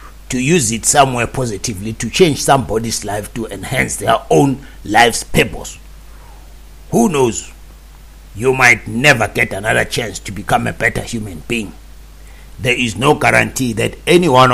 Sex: male